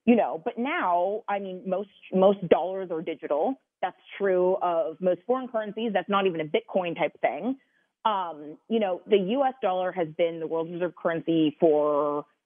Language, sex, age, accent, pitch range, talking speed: English, female, 30-49, American, 170-210 Hz, 180 wpm